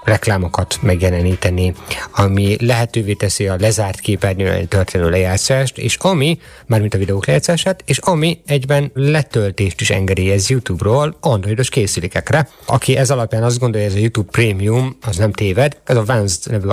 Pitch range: 100-130 Hz